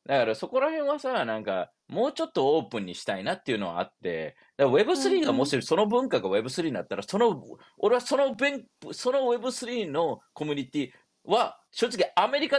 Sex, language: male, Japanese